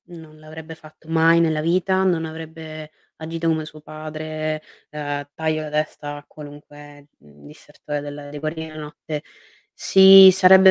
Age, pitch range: 20-39, 150-180 Hz